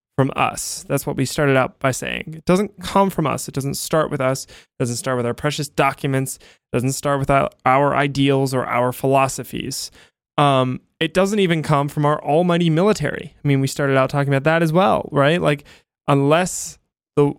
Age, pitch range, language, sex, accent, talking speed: 20-39, 130-165 Hz, English, male, American, 200 wpm